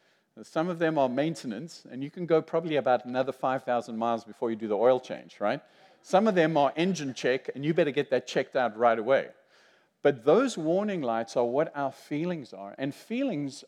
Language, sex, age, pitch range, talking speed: English, male, 50-69, 130-185 Hz, 205 wpm